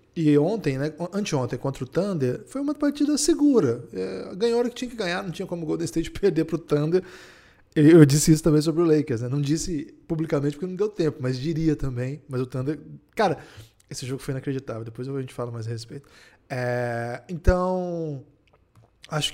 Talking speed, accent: 190 wpm, Brazilian